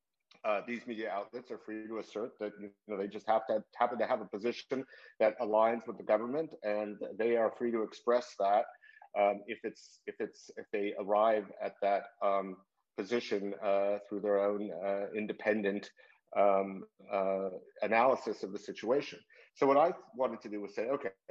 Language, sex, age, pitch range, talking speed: Turkish, male, 50-69, 100-115 Hz, 185 wpm